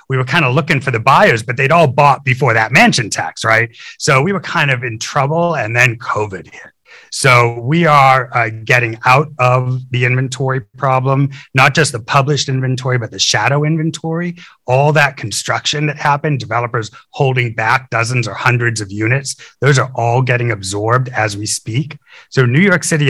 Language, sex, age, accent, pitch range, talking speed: English, male, 30-49, American, 115-140 Hz, 185 wpm